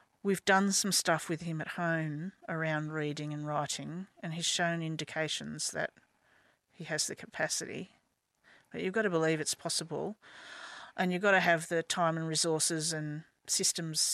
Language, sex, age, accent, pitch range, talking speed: English, female, 40-59, Australian, 165-195 Hz, 165 wpm